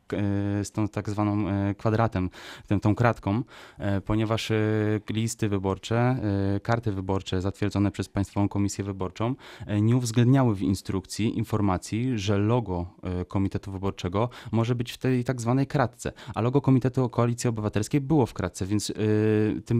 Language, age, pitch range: Polish, 20-39, 105-120 Hz